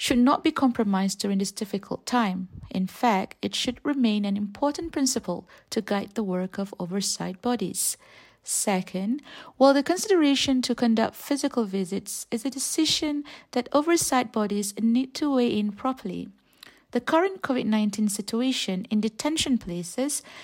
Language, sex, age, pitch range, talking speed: English, female, 50-69, 200-270 Hz, 145 wpm